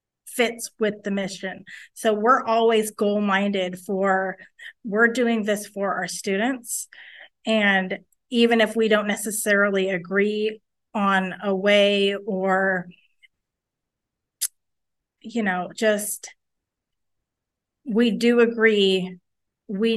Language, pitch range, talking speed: English, 200-240 Hz, 100 wpm